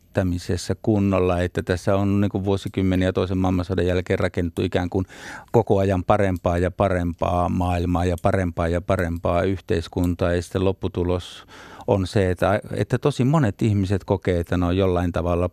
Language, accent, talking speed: Finnish, native, 150 wpm